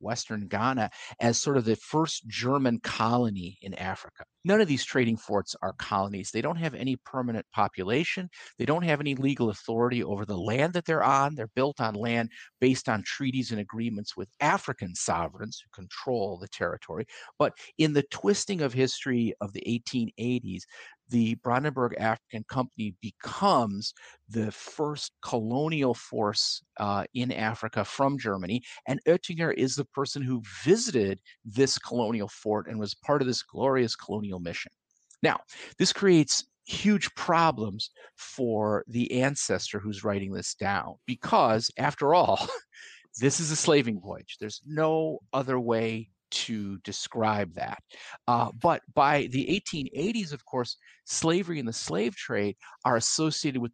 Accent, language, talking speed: American, English, 150 wpm